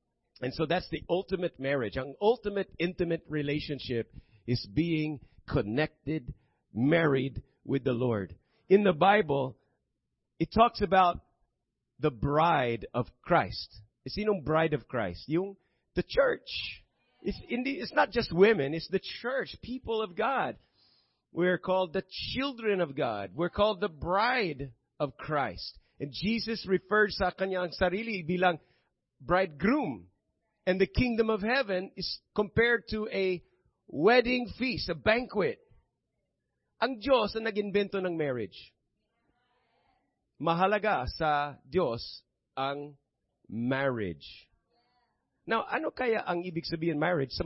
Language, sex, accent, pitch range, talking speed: English, male, American, 140-200 Hz, 120 wpm